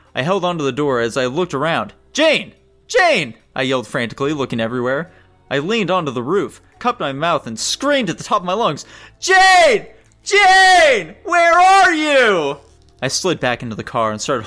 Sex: male